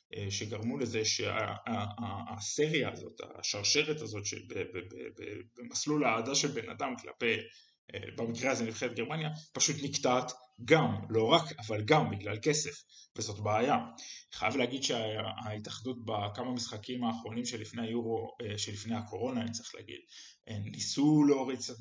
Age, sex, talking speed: 20-39, male, 125 wpm